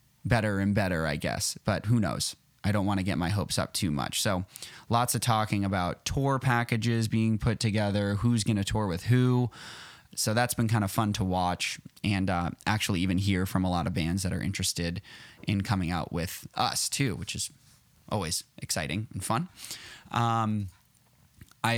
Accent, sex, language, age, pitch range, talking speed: American, male, English, 20-39, 95-115 Hz, 190 wpm